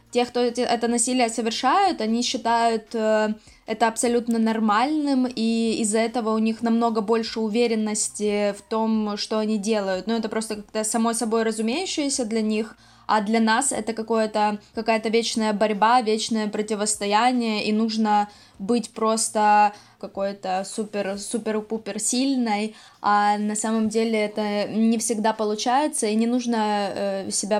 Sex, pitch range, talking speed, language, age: female, 215-235 Hz, 135 wpm, Ukrainian, 20-39